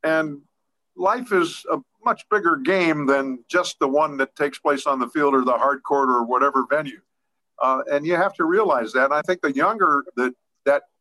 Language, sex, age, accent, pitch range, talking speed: English, male, 50-69, American, 135-170 Hz, 205 wpm